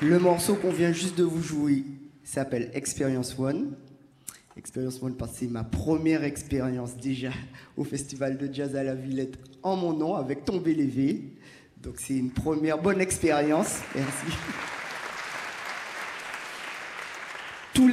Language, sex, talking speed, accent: French, male, 155 wpm, French